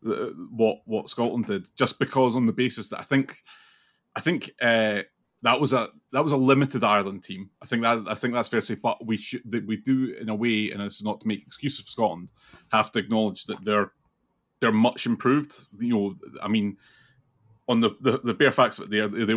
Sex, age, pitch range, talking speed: male, 20-39, 105-125 Hz, 225 wpm